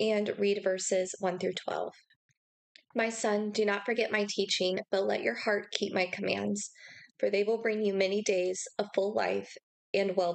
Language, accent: English, American